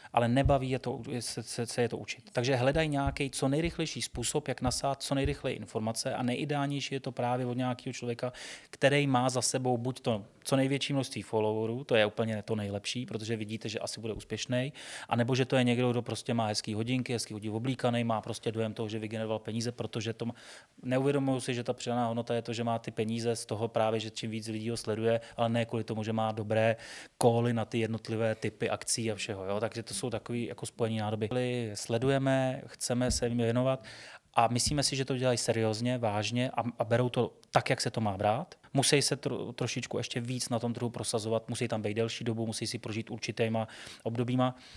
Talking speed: 210 wpm